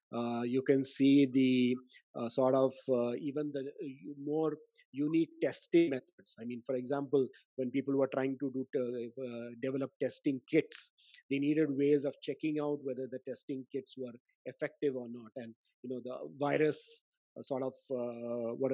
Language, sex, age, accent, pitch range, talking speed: English, male, 50-69, Indian, 130-160 Hz, 170 wpm